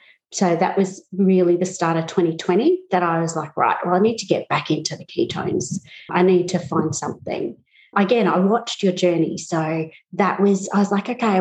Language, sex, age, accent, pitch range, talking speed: English, female, 30-49, Australian, 175-230 Hz, 205 wpm